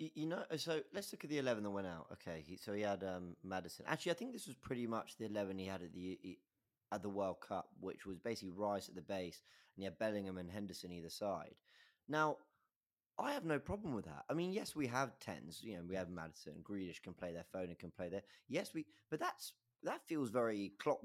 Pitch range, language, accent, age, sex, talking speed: 100-130 Hz, English, British, 30-49, male, 245 wpm